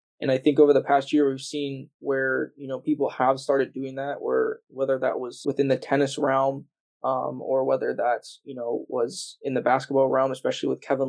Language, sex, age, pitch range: English, male, 20-39, 130-145 Hz